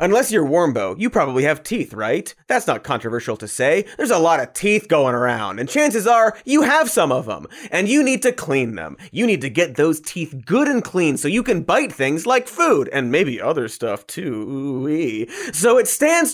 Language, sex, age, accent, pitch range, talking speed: English, male, 30-49, American, 155-255 Hz, 215 wpm